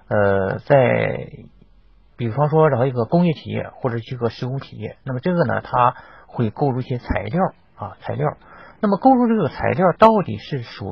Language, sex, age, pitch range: Chinese, male, 50-69, 115-175 Hz